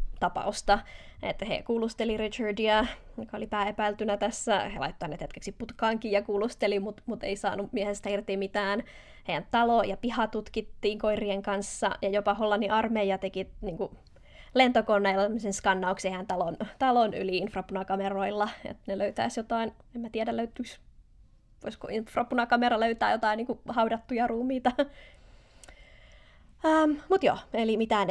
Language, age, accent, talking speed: Finnish, 20-39, native, 130 wpm